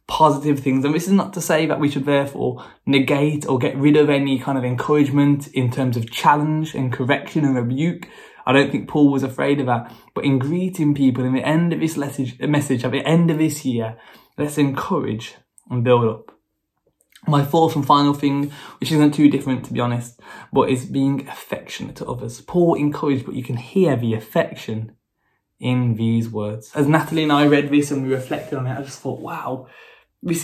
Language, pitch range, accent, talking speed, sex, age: English, 130-150 Hz, British, 205 wpm, male, 10-29